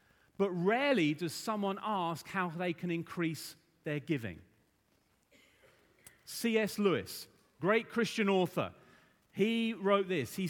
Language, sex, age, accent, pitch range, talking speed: English, male, 40-59, British, 180-235 Hz, 115 wpm